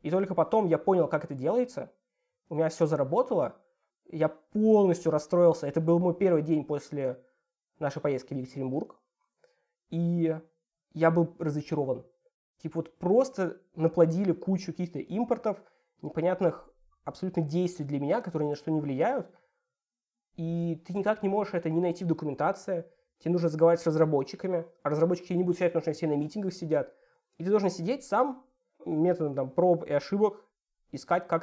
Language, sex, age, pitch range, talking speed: Russian, male, 20-39, 160-220 Hz, 160 wpm